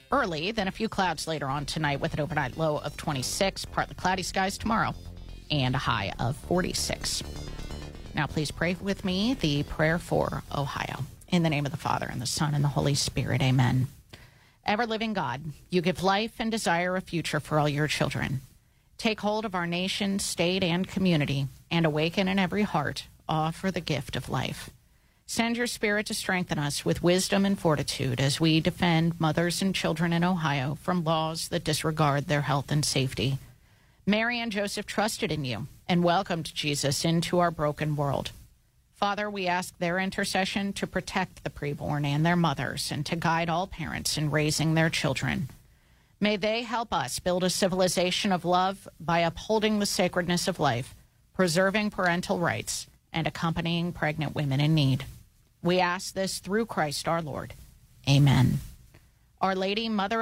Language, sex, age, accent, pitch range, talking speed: English, female, 30-49, American, 145-190 Hz, 175 wpm